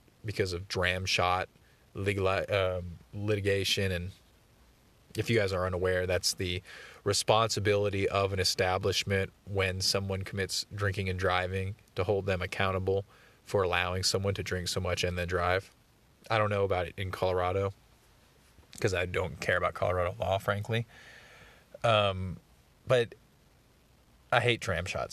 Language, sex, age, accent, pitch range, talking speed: English, male, 20-39, American, 90-110 Hz, 140 wpm